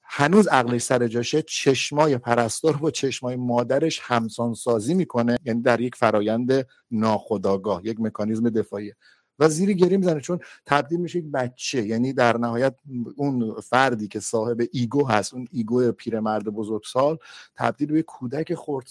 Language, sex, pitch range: Persian, male, 105-140 Hz